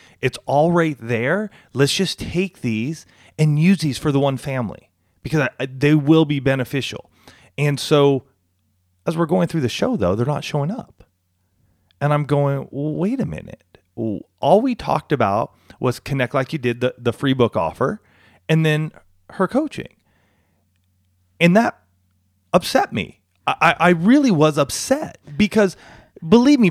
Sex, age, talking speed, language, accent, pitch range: male, 30-49, 155 wpm, English, American, 120-185 Hz